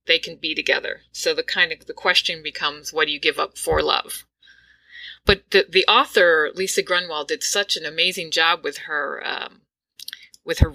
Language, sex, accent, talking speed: English, female, American, 190 wpm